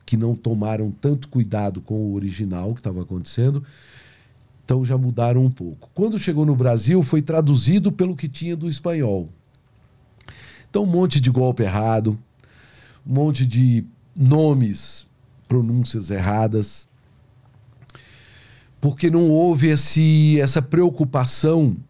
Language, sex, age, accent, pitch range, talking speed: Portuguese, male, 50-69, Brazilian, 115-150 Hz, 125 wpm